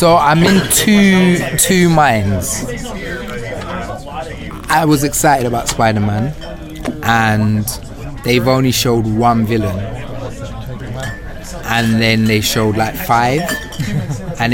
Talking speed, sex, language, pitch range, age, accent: 100 wpm, male, English, 110-135 Hz, 20-39, British